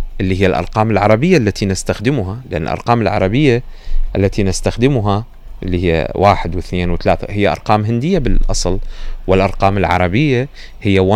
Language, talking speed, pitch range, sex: Arabic, 130 wpm, 90-120 Hz, male